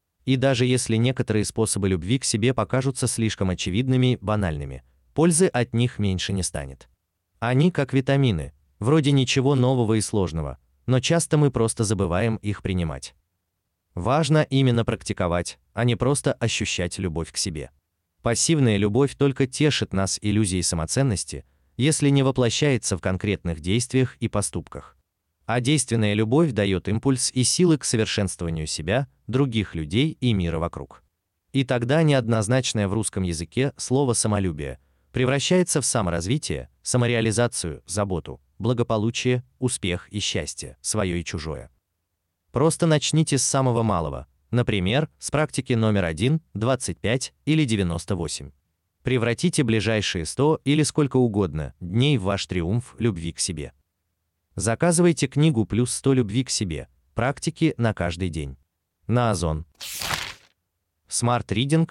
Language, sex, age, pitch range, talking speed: Russian, male, 30-49, 85-130 Hz, 130 wpm